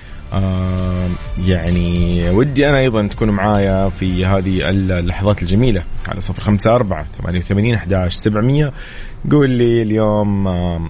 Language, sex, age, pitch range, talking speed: Arabic, male, 30-49, 95-110 Hz, 120 wpm